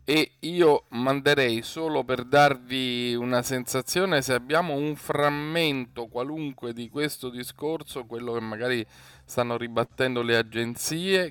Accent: native